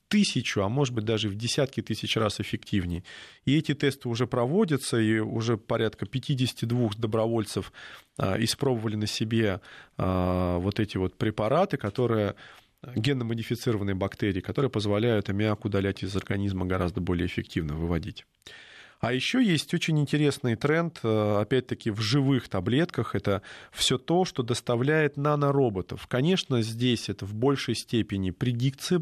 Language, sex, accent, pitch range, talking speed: Russian, male, native, 105-140 Hz, 130 wpm